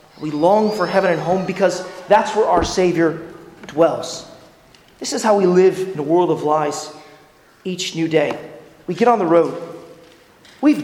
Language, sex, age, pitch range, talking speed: English, male, 30-49, 165-230 Hz, 170 wpm